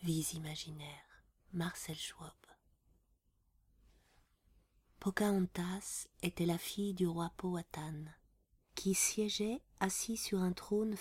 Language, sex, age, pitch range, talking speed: French, female, 30-49, 165-195 Hz, 95 wpm